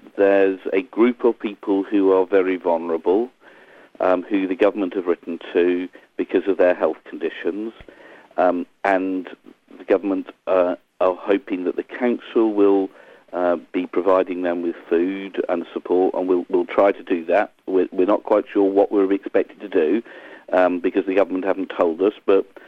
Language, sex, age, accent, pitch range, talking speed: English, male, 50-69, British, 95-120 Hz, 175 wpm